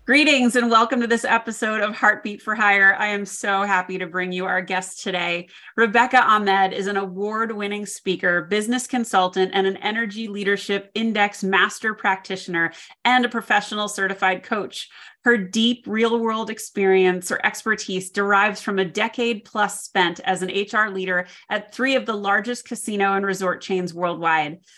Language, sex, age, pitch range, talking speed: English, female, 30-49, 185-225 Hz, 160 wpm